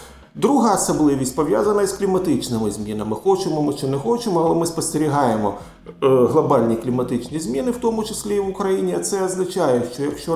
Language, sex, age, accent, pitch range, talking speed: Ukrainian, male, 40-59, native, 130-185 Hz, 155 wpm